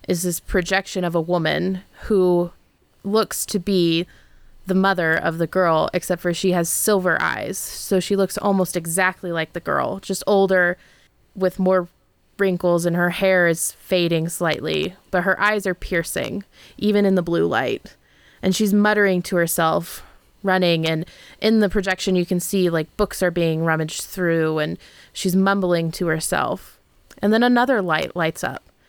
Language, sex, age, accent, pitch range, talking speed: English, female, 20-39, American, 170-195 Hz, 165 wpm